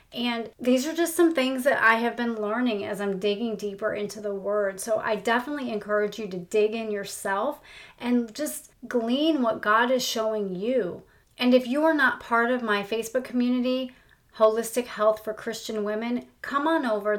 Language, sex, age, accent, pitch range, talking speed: English, female, 30-49, American, 210-250 Hz, 185 wpm